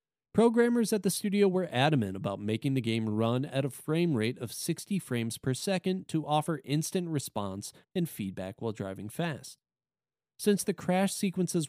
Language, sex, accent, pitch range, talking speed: English, male, American, 120-180 Hz, 170 wpm